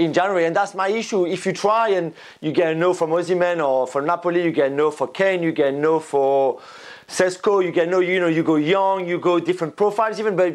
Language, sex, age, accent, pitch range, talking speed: English, male, 30-49, French, 160-190 Hz, 260 wpm